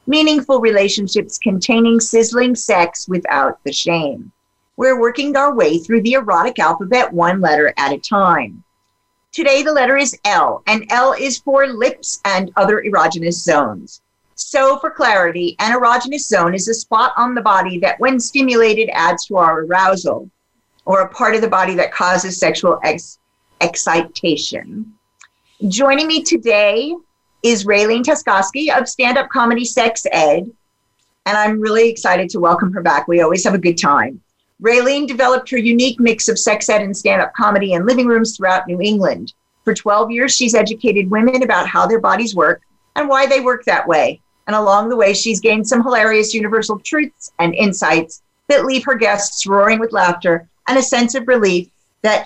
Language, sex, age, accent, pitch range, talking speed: English, female, 50-69, American, 190-255 Hz, 170 wpm